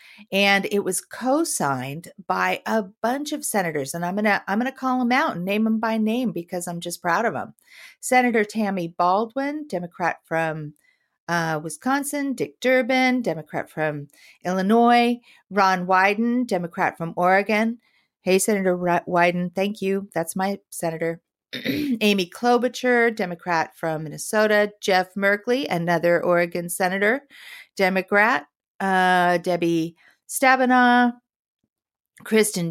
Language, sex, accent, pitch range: English, female, American, 175-235 Hz